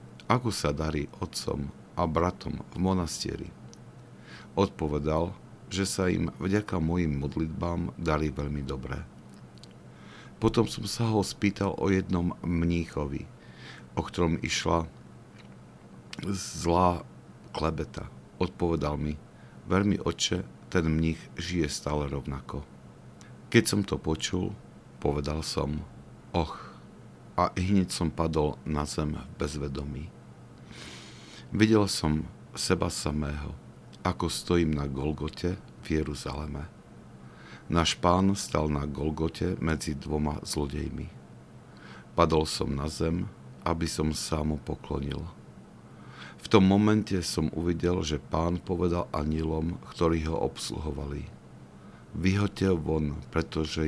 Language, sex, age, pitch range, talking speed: Slovak, male, 50-69, 70-90 Hz, 105 wpm